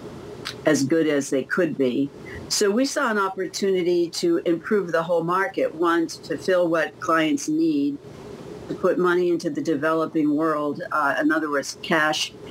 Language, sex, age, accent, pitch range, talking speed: English, female, 60-79, American, 145-170 Hz, 165 wpm